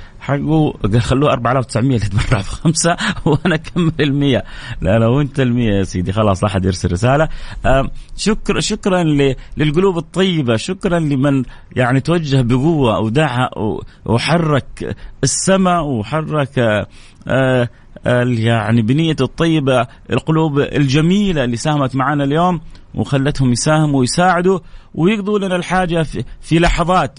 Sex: male